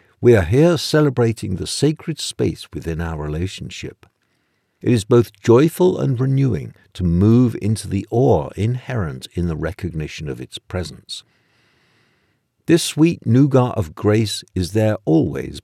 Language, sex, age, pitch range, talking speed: English, male, 60-79, 90-120 Hz, 140 wpm